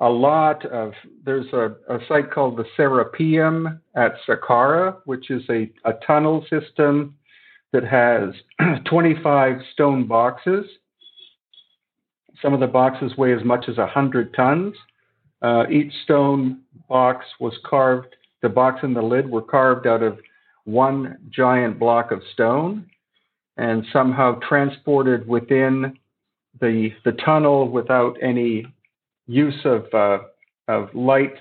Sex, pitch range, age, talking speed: male, 115-140 Hz, 50-69, 130 wpm